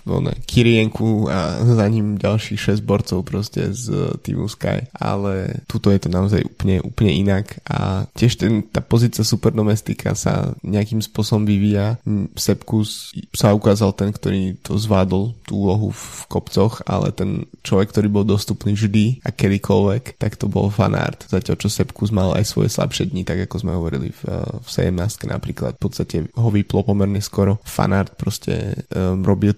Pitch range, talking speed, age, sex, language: 95-110 Hz, 160 wpm, 20-39, male, Slovak